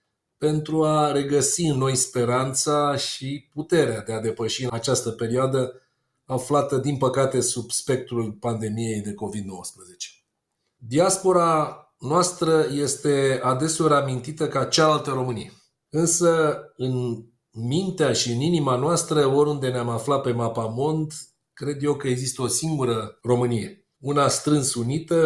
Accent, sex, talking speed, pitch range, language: native, male, 125 wpm, 125-160 Hz, Romanian